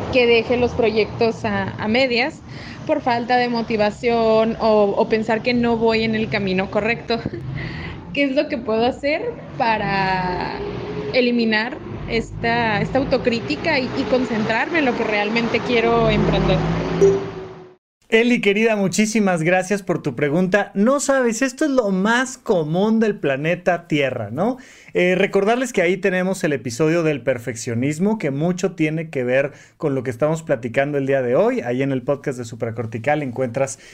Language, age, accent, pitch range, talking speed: Spanish, 20-39, Mexican, 155-225 Hz, 155 wpm